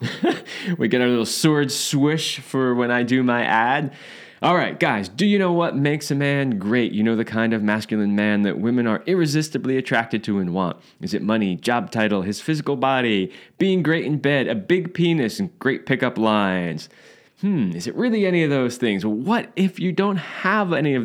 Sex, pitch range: male, 105-145 Hz